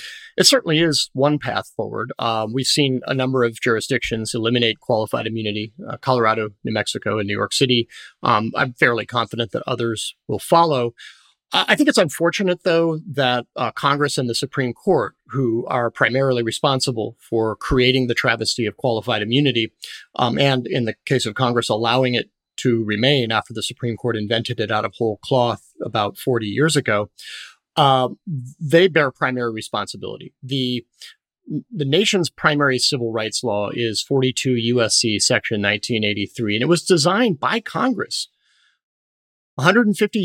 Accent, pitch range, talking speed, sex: American, 115-145 Hz, 160 wpm, male